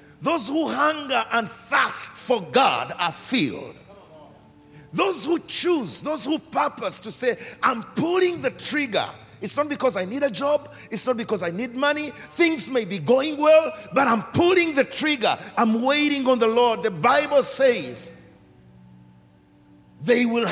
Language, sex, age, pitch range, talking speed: English, male, 50-69, 200-300 Hz, 160 wpm